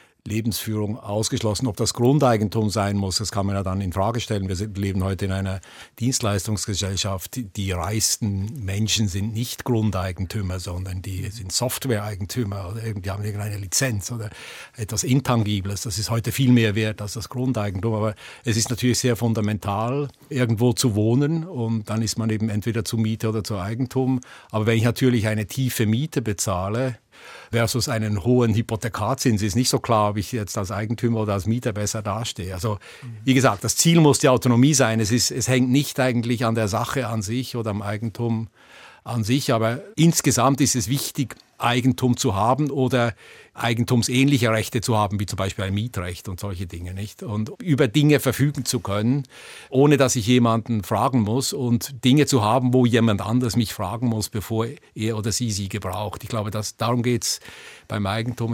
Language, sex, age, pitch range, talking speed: German, male, 60-79, 105-125 Hz, 180 wpm